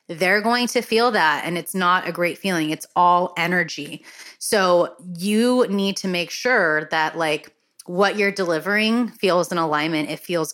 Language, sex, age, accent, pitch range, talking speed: English, female, 30-49, American, 155-185 Hz, 170 wpm